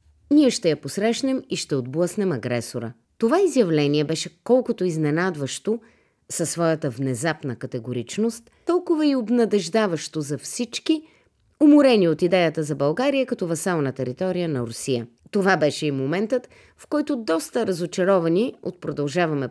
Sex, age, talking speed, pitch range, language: female, 30-49, 130 wpm, 150-245 Hz, Bulgarian